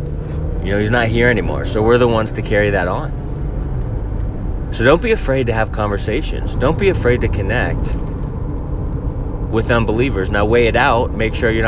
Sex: male